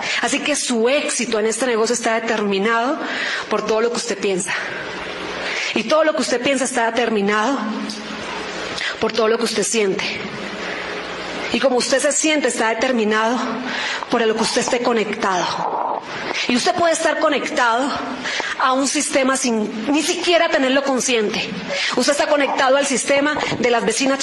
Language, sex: Spanish, female